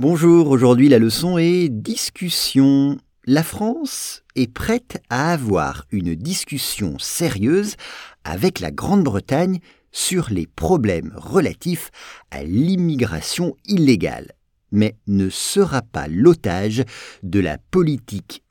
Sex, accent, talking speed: male, French, 105 wpm